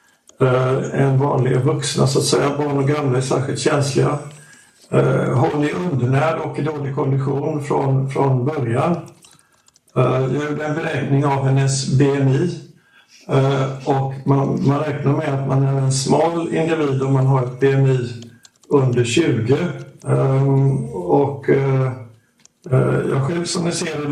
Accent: native